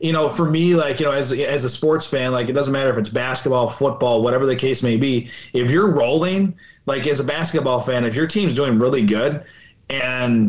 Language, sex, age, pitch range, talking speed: English, male, 20-39, 125-155 Hz, 230 wpm